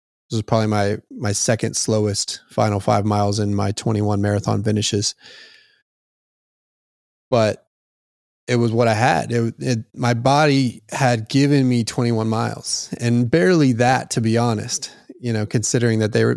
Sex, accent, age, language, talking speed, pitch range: male, American, 20-39, English, 150 wpm, 110-130 Hz